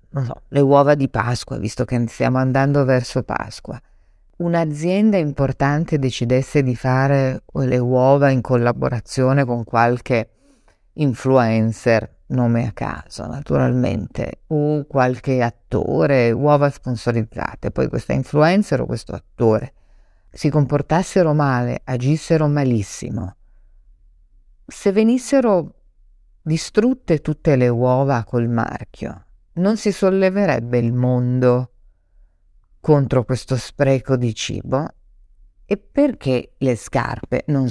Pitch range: 110-145 Hz